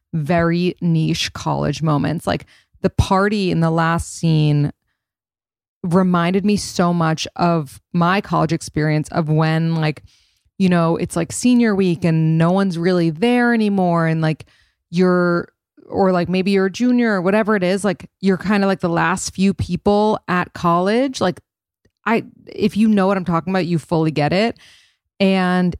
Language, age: English, 20-39